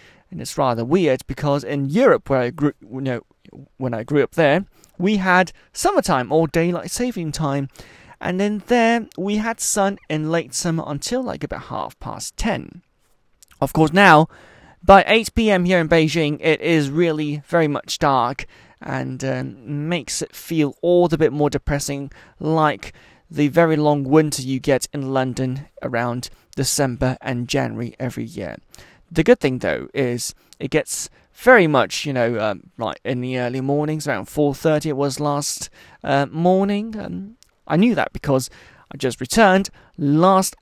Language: English